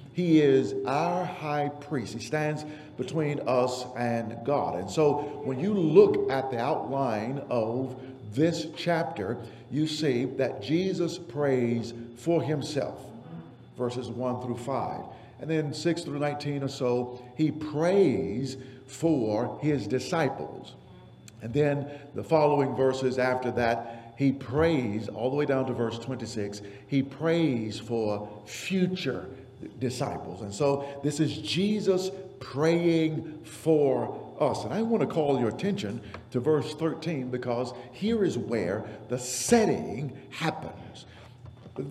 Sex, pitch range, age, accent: male, 120-155 Hz, 50-69, American